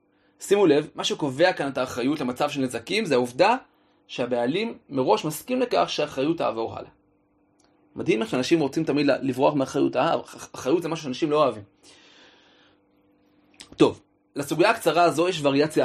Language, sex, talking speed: Hebrew, male, 135 wpm